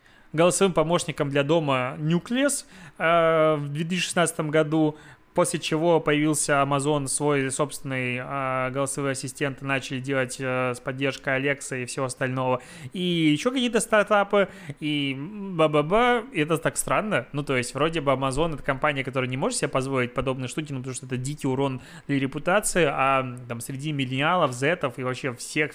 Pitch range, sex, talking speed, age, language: 135-160 Hz, male, 160 wpm, 20-39, Russian